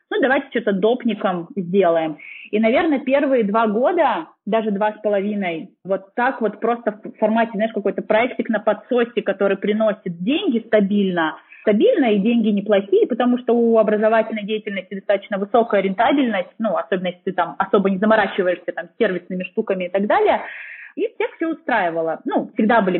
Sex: female